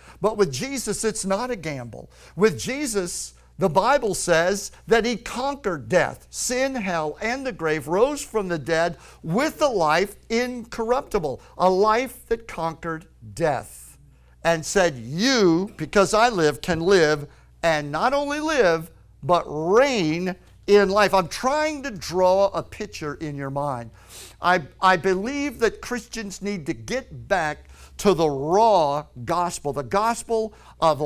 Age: 50-69